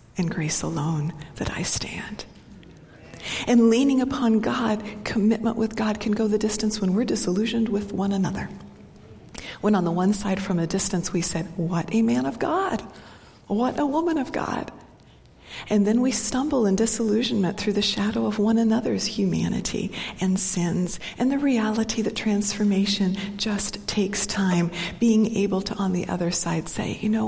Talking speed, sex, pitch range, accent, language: 165 wpm, female, 185-220 Hz, American, English